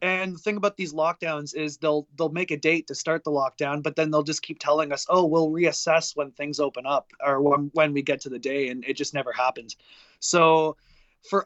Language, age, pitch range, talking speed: English, 20-39, 140-165 Hz, 230 wpm